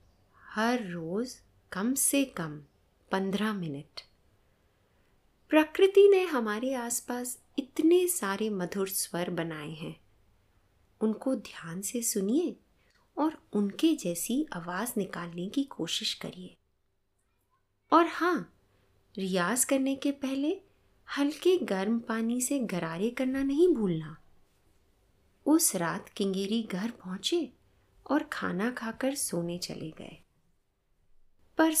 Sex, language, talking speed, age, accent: female, Hindi, 105 wpm, 20-39, native